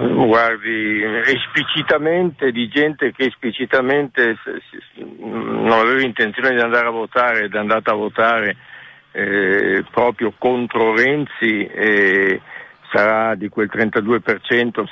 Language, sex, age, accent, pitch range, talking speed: Italian, male, 60-79, native, 110-125 Hz, 110 wpm